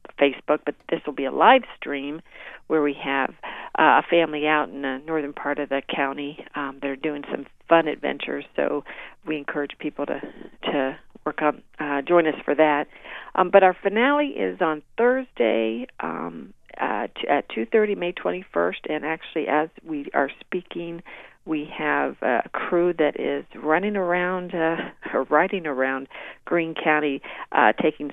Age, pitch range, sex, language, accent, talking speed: 50-69, 140-170 Hz, female, English, American, 160 wpm